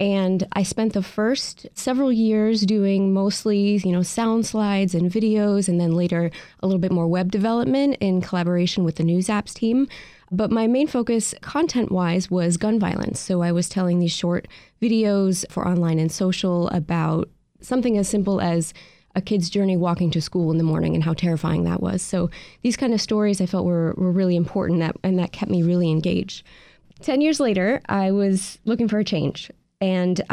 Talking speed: 190 wpm